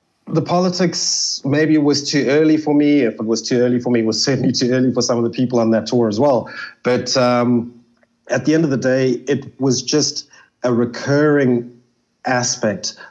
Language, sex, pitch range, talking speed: English, male, 120-150 Hz, 205 wpm